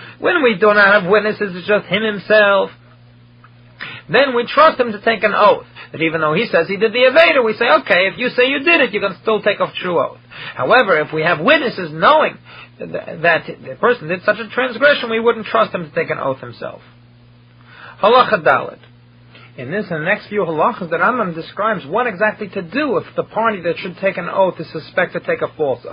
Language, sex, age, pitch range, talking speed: English, male, 40-59, 160-210 Hz, 220 wpm